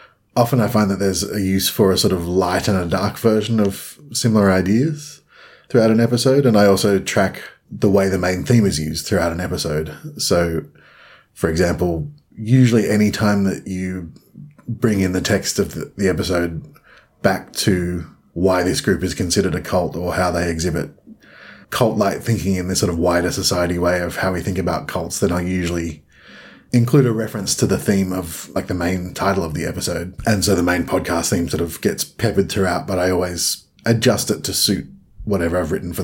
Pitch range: 85-100 Hz